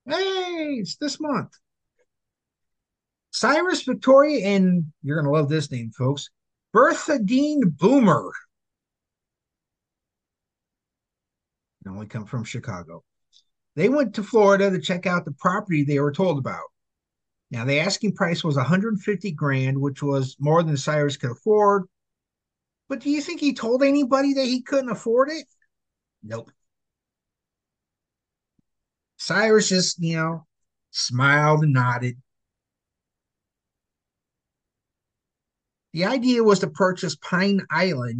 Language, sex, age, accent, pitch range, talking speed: English, male, 50-69, American, 140-235 Hz, 120 wpm